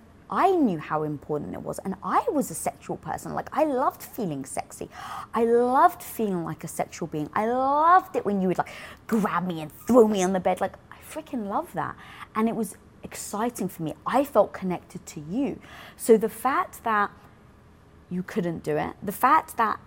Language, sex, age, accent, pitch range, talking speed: English, female, 20-39, British, 175-230 Hz, 200 wpm